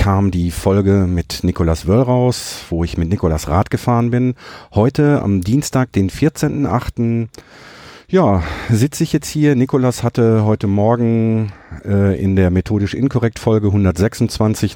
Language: German